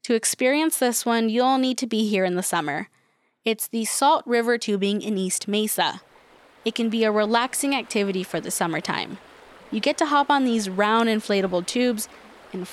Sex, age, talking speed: female, 20-39, 185 wpm